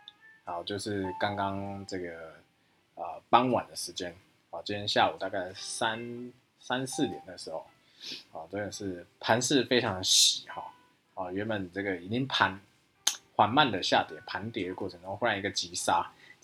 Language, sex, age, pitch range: Chinese, male, 20-39, 95-125 Hz